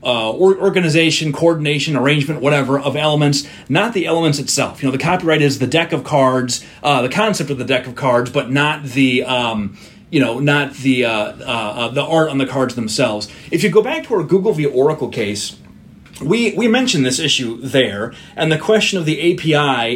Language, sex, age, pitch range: English, male, 30-49, 130-170 Hz